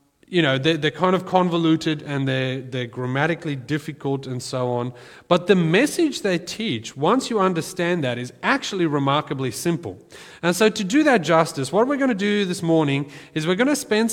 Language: English